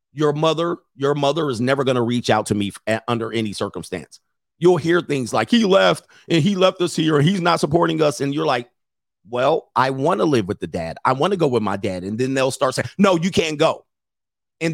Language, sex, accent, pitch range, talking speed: English, male, American, 120-165 Hz, 245 wpm